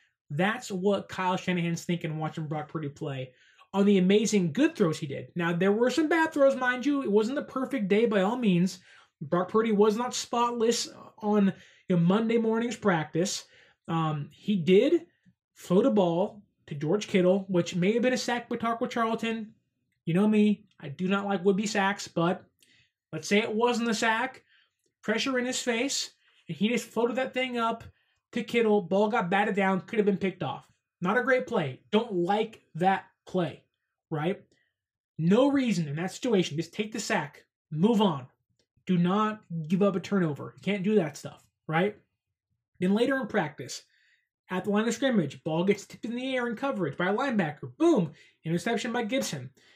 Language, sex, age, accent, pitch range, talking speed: English, male, 20-39, American, 175-230 Hz, 185 wpm